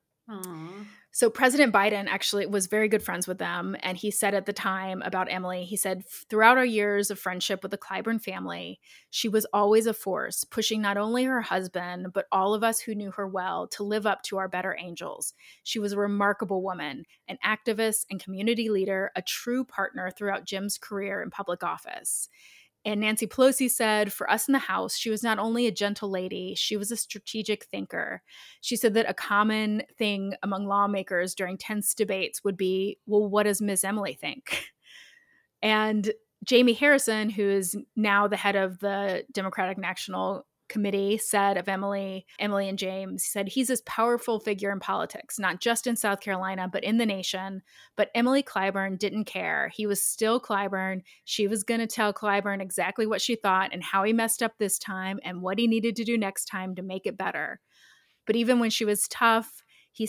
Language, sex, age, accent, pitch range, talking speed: English, female, 20-39, American, 195-220 Hz, 195 wpm